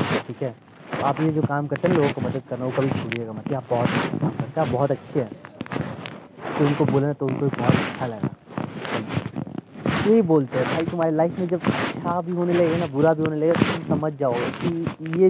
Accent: native